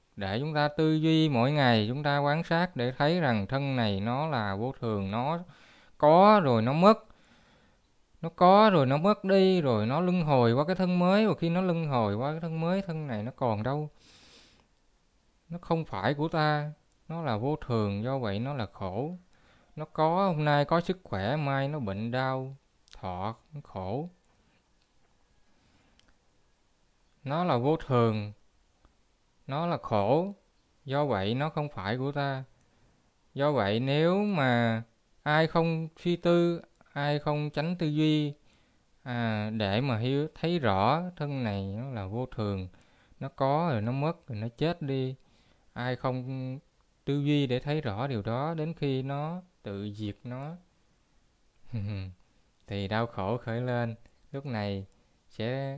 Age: 20-39